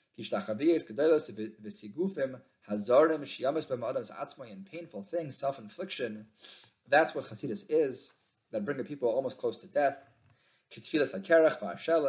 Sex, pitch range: male, 115-170 Hz